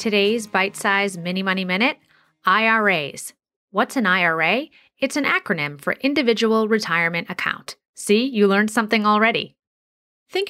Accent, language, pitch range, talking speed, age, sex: American, English, 175-235 Hz, 130 wpm, 30-49, female